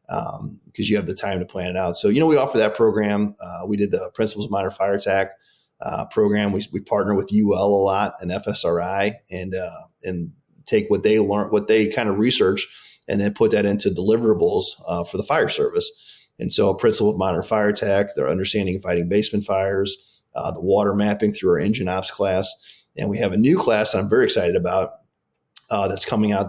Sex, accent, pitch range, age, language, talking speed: male, American, 95-115 Hz, 30-49, English, 215 wpm